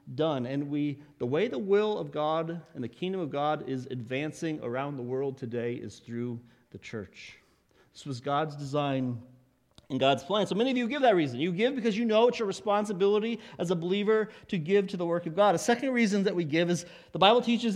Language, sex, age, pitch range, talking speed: English, male, 40-59, 140-195 Hz, 225 wpm